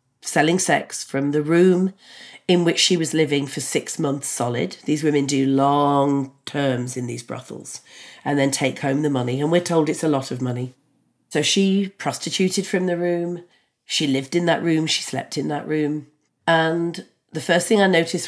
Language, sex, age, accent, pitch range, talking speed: English, female, 40-59, British, 140-185 Hz, 190 wpm